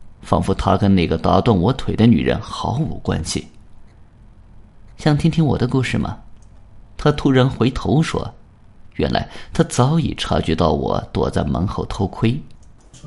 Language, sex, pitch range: Chinese, male, 100-125 Hz